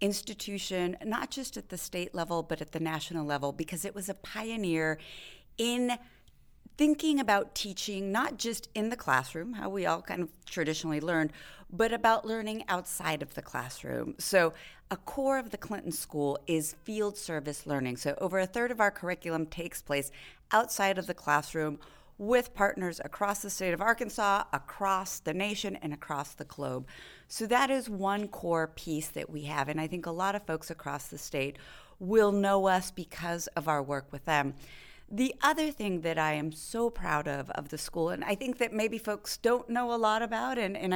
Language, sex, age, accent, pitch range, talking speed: English, female, 30-49, American, 160-220 Hz, 190 wpm